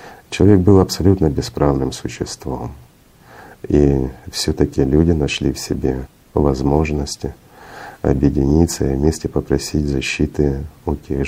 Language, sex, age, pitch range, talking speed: Russian, male, 50-69, 65-80 Hz, 100 wpm